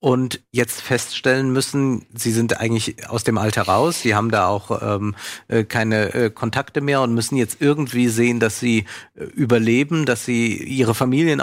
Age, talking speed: 50-69, 175 wpm